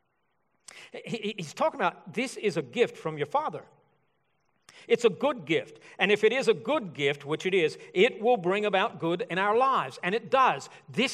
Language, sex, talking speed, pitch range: English, male, 195 wpm, 175-250 Hz